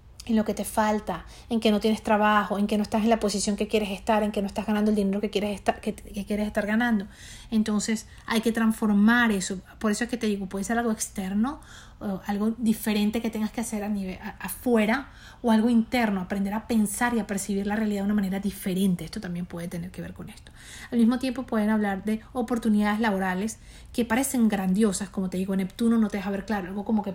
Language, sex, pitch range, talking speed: Spanish, female, 195-225 Hz, 235 wpm